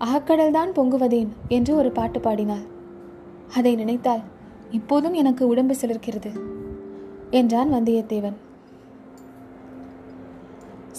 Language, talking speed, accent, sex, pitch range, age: Tamil, 80 wpm, native, female, 215-290 Hz, 20-39